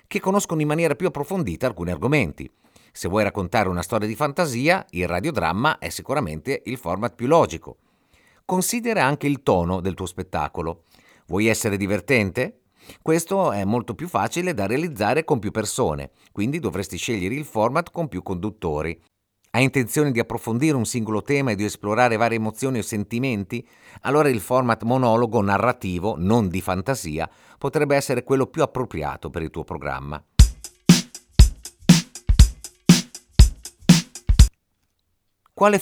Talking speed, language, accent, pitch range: 140 wpm, Italian, native, 95-135 Hz